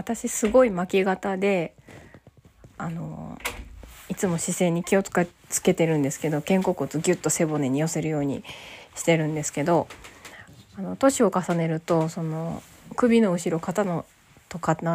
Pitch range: 145-195 Hz